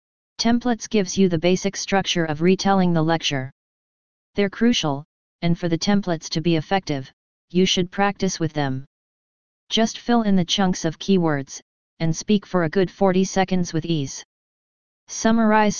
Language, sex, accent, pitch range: English, female, American, 165-200 Hz